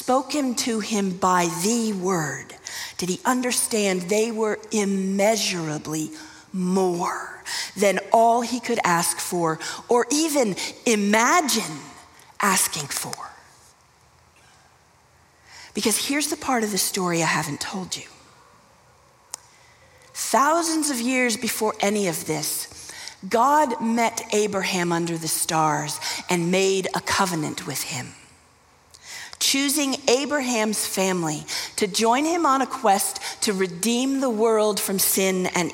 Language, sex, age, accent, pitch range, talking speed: English, female, 40-59, American, 180-245 Hz, 120 wpm